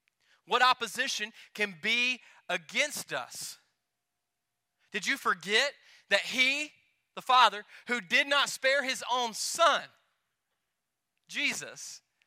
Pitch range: 160-215 Hz